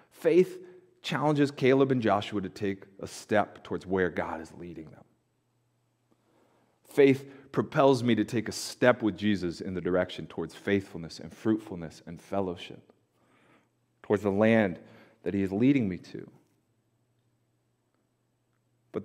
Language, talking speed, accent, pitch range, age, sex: English, 135 wpm, American, 100-150 Hz, 30-49, male